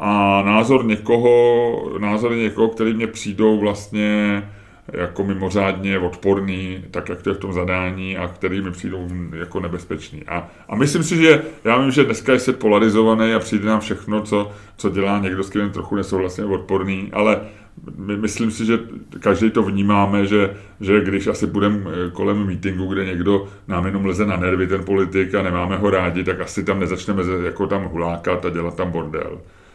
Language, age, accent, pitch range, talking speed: Czech, 30-49, native, 95-105 Hz, 180 wpm